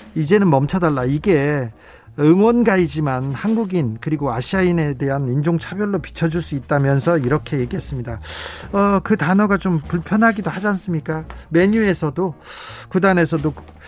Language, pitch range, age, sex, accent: Korean, 145-195 Hz, 40-59, male, native